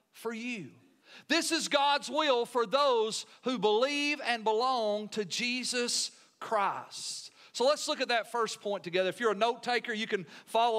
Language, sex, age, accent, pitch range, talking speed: English, male, 40-59, American, 210-260 Hz, 170 wpm